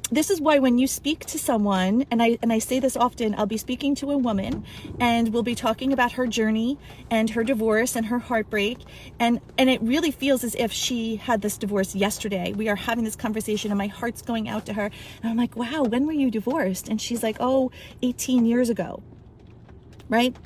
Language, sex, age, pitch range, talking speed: English, female, 30-49, 210-250 Hz, 215 wpm